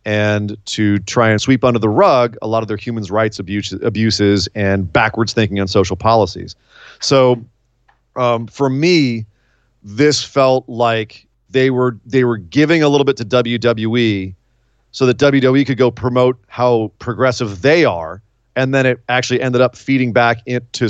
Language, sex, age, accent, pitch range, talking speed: English, male, 30-49, American, 110-135 Hz, 165 wpm